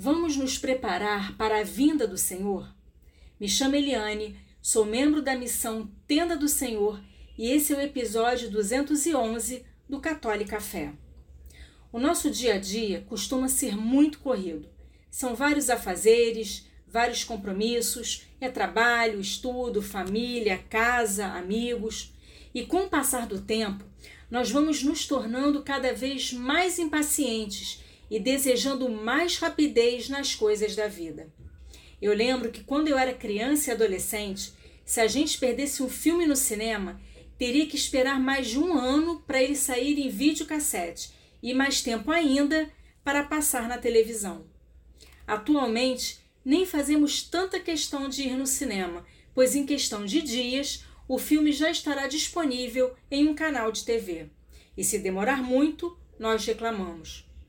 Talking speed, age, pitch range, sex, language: 140 wpm, 40-59, 215-285 Hz, female, Portuguese